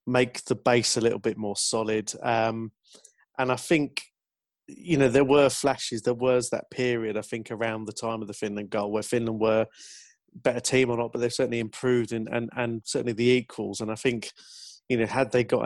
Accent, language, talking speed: British, English, 210 wpm